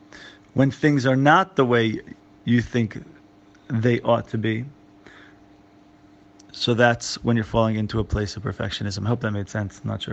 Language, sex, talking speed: English, male, 180 wpm